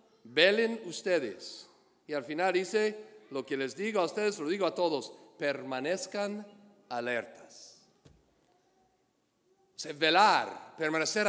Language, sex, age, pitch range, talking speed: English, male, 50-69, 145-195 Hz, 105 wpm